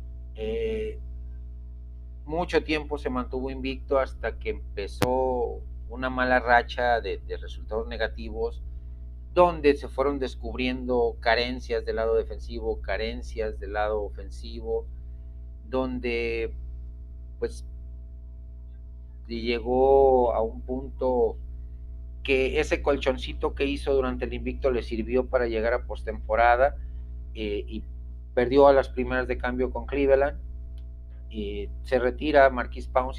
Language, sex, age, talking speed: Spanish, male, 40-59, 110 wpm